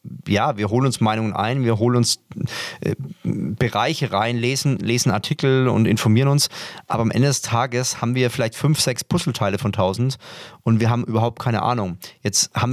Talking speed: 180 wpm